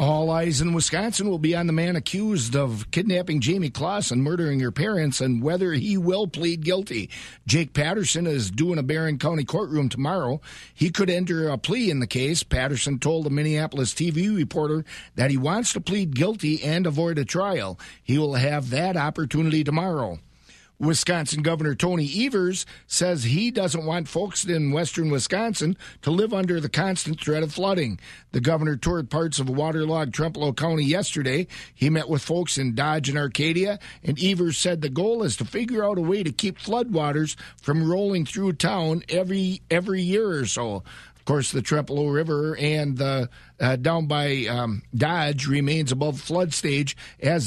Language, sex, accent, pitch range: English, male, American, 140-175 Hz